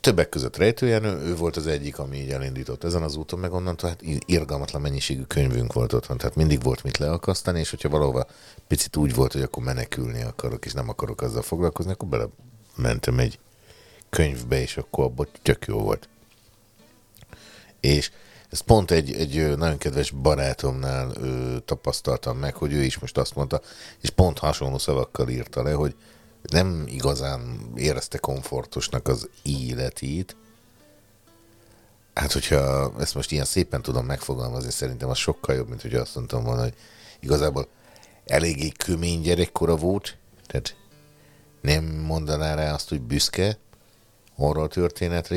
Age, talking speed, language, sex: 60-79, 150 wpm, Hungarian, male